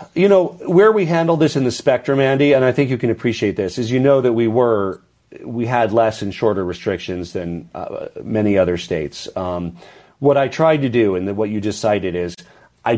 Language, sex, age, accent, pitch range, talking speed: English, male, 40-59, American, 95-120 Hz, 215 wpm